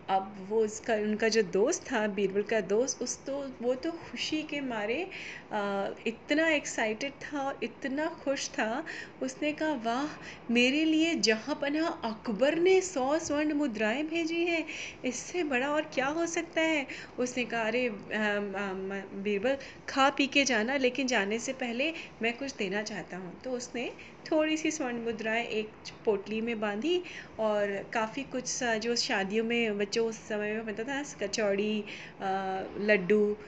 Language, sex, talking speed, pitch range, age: Hindi, female, 155 wpm, 210-275 Hz, 30-49